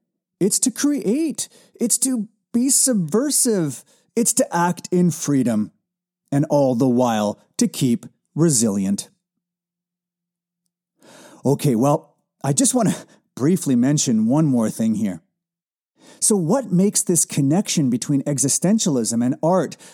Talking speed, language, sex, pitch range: 120 wpm, English, male, 140-215 Hz